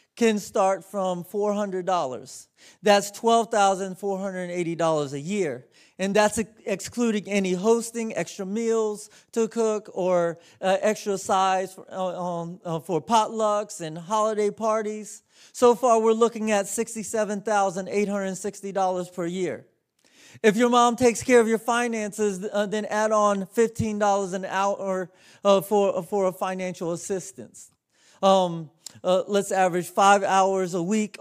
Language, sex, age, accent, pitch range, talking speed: English, male, 30-49, American, 185-215 Hz, 125 wpm